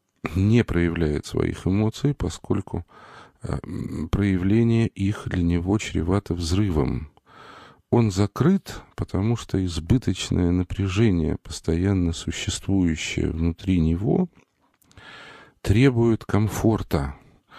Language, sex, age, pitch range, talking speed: Russian, male, 40-59, 85-105 Hz, 80 wpm